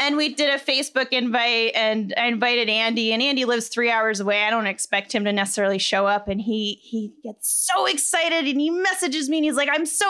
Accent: American